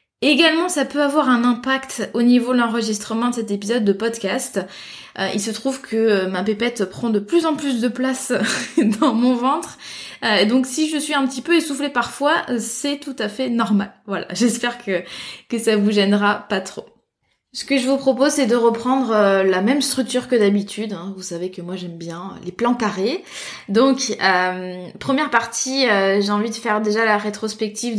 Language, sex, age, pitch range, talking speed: French, female, 20-39, 205-250 Hz, 195 wpm